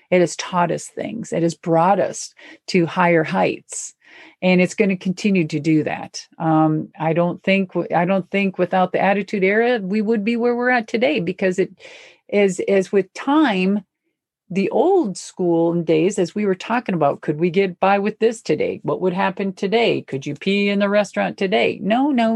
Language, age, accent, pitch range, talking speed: English, 50-69, American, 170-225 Hz, 195 wpm